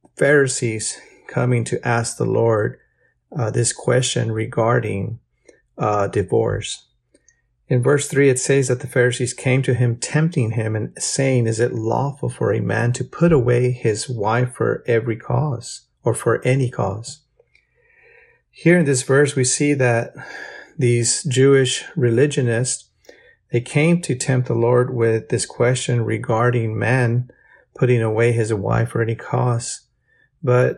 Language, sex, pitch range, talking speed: English, male, 115-135 Hz, 145 wpm